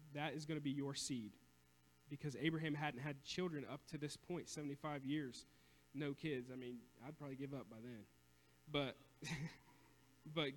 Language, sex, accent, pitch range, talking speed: English, male, American, 125-165 Hz, 170 wpm